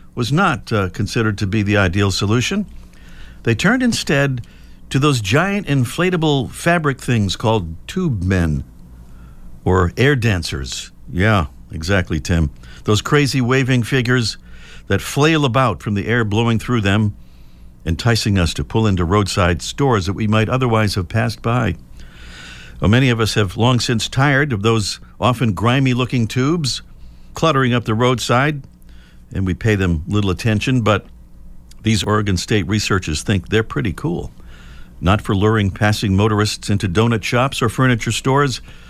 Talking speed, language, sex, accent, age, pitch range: 150 wpm, English, male, American, 50-69, 80-125 Hz